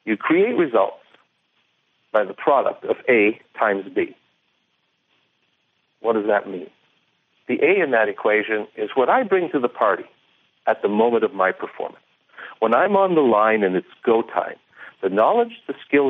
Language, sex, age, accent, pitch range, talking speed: English, male, 60-79, American, 125-210 Hz, 170 wpm